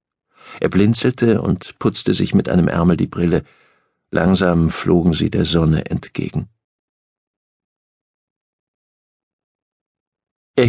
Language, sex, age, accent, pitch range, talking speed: German, male, 50-69, German, 100-130 Hz, 95 wpm